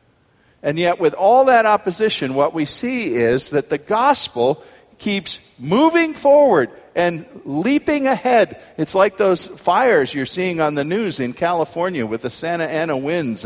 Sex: male